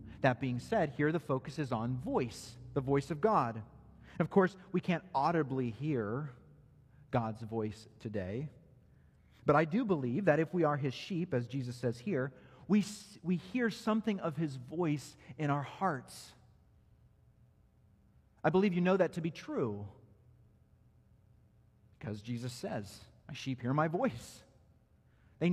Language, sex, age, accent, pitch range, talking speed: English, male, 40-59, American, 115-155 Hz, 150 wpm